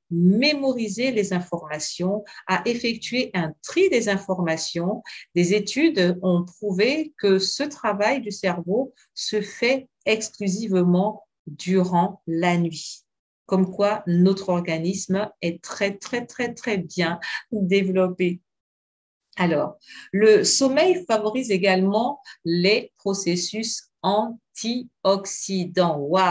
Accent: French